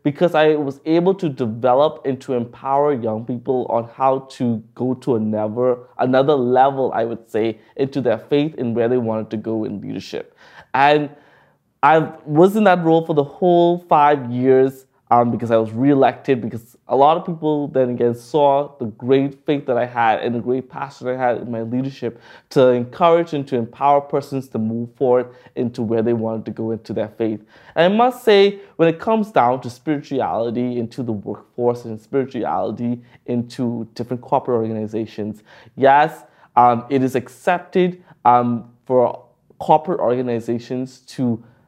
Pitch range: 120-145 Hz